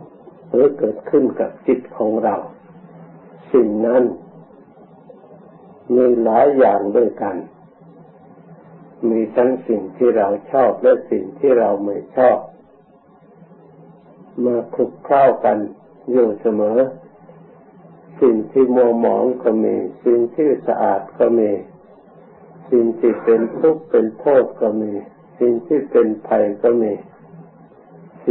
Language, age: Thai, 60-79